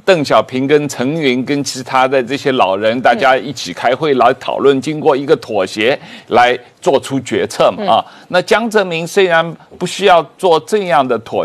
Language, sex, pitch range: Chinese, male, 130-180 Hz